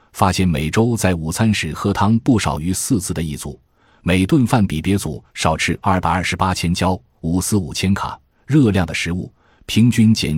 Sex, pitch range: male, 80-110 Hz